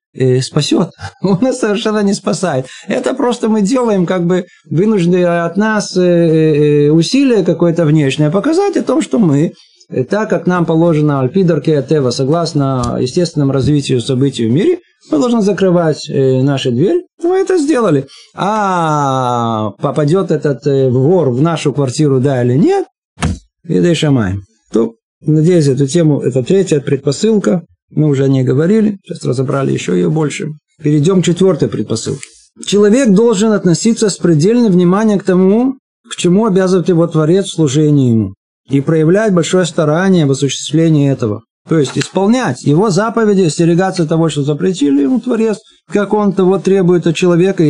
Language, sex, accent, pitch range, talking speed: Russian, male, native, 145-200 Hz, 145 wpm